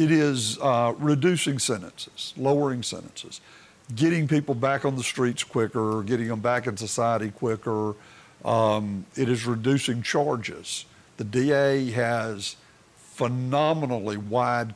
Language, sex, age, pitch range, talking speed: English, male, 50-69, 120-150 Hz, 120 wpm